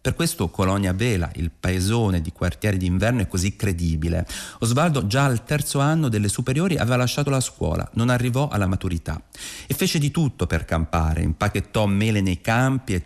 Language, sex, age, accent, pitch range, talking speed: Italian, male, 40-59, native, 90-125 Hz, 175 wpm